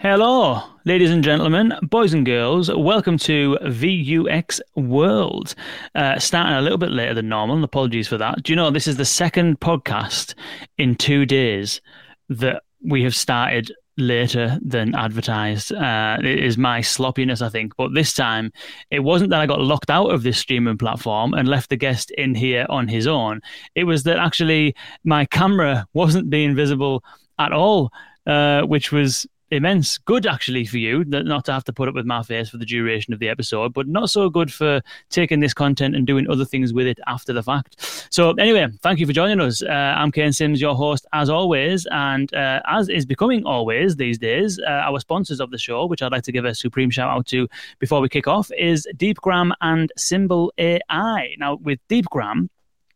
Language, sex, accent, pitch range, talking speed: English, male, British, 125-165 Hz, 195 wpm